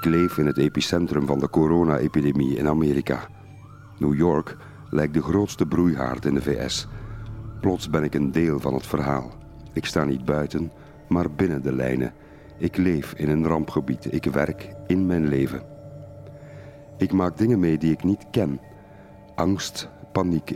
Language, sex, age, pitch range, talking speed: Dutch, male, 50-69, 75-100 Hz, 160 wpm